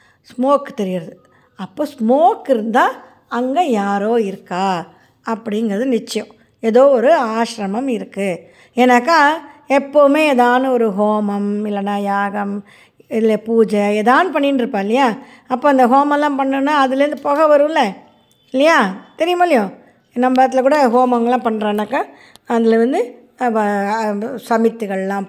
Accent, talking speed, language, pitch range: native, 100 wpm, Tamil, 205-260 Hz